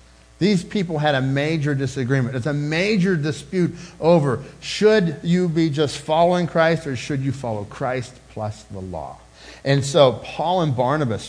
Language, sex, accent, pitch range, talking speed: English, male, American, 120-170 Hz, 160 wpm